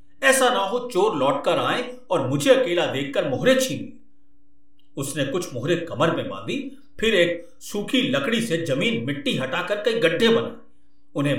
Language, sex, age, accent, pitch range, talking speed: Hindi, male, 50-69, native, 175-290 Hz, 160 wpm